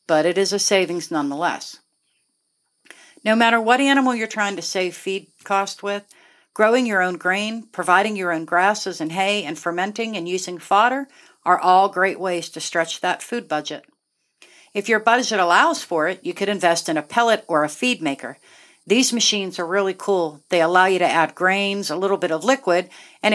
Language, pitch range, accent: English, 170-215 Hz, American